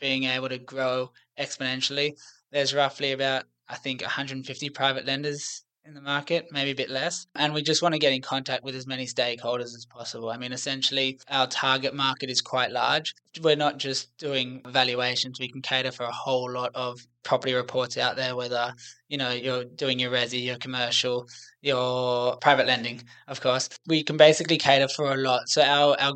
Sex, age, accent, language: male, 20-39, Australian, English